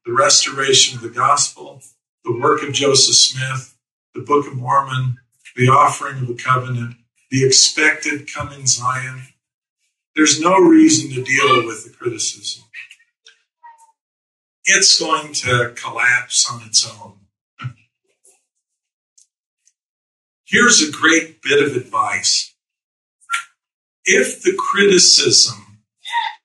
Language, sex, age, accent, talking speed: English, male, 50-69, American, 105 wpm